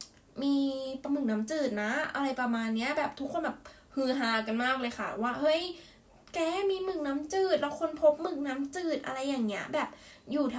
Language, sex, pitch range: Thai, female, 225-295 Hz